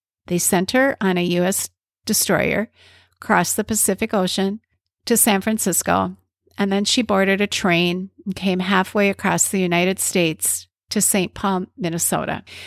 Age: 50-69